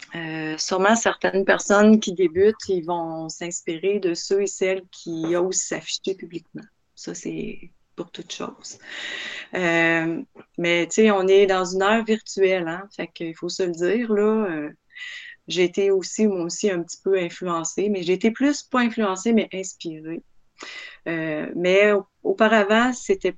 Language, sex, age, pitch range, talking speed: French, female, 30-49, 175-220 Hz, 160 wpm